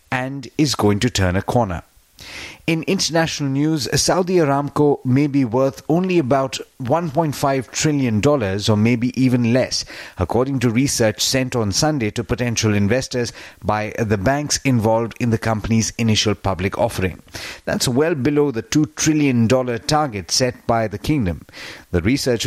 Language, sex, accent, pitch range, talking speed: English, male, Indian, 105-135 Hz, 145 wpm